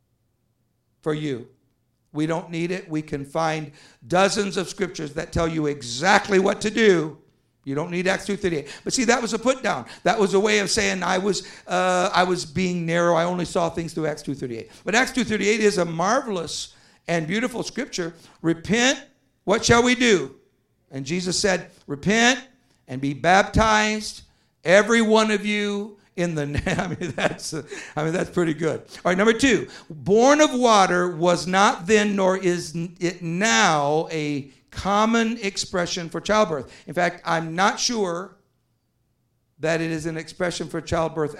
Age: 50-69